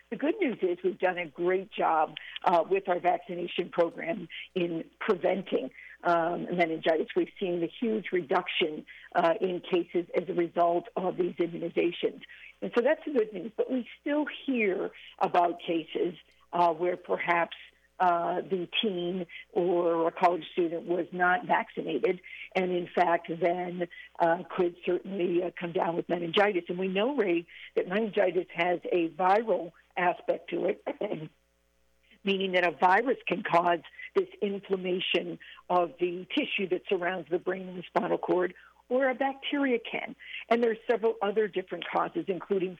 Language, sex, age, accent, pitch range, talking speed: English, female, 60-79, American, 175-220 Hz, 155 wpm